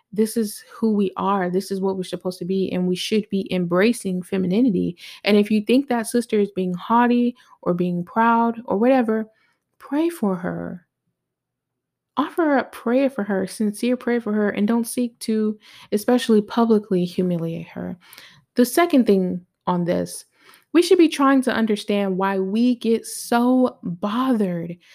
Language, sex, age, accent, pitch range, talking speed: English, female, 20-39, American, 185-240 Hz, 165 wpm